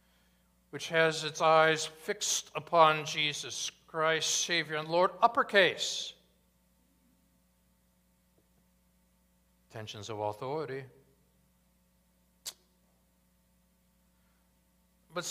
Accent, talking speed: American, 65 wpm